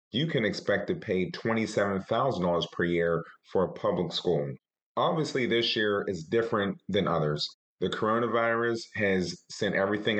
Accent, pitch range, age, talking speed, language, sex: American, 85-110 Hz, 30-49, 140 wpm, English, male